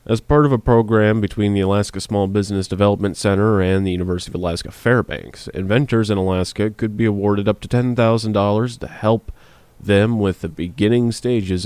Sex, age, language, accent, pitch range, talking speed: male, 30-49, English, American, 90-105 Hz, 175 wpm